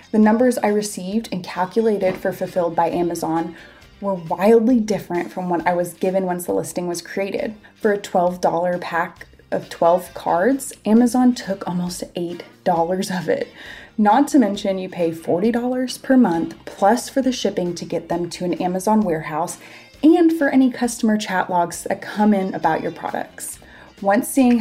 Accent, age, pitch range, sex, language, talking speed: American, 20-39, 175-225 Hz, female, English, 170 wpm